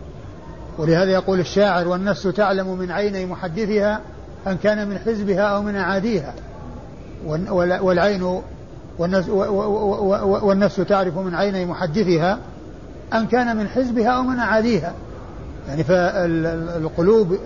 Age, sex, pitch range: 60-79, male, 175-205 Hz